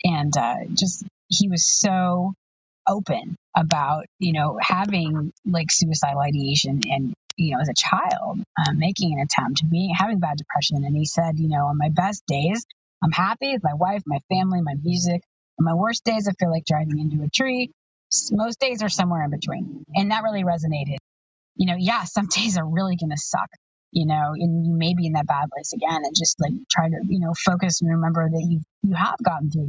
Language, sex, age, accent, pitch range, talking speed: English, female, 30-49, American, 155-190 Hz, 210 wpm